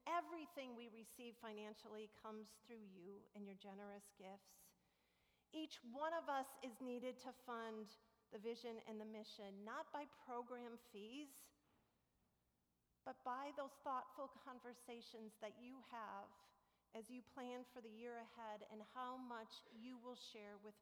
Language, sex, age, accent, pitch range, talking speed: English, female, 40-59, American, 215-290 Hz, 145 wpm